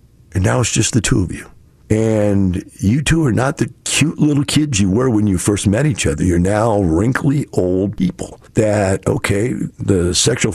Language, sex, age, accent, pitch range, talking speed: English, male, 50-69, American, 90-115 Hz, 195 wpm